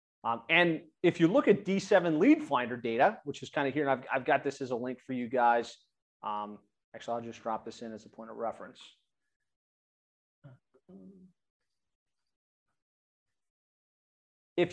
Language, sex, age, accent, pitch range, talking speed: English, male, 30-49, American, 135-190 Hz, 160 wpm